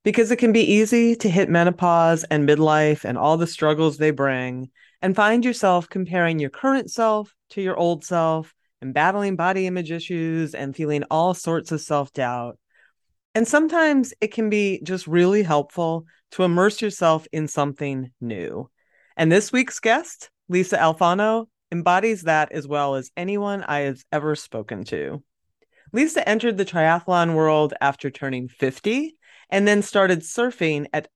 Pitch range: 150-210 Hz